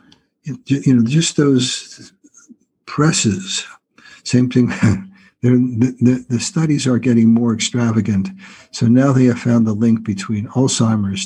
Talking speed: 130 wpm